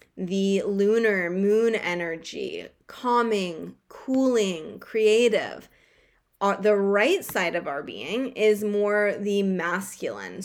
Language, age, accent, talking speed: English, 20-39, American, 100 wpm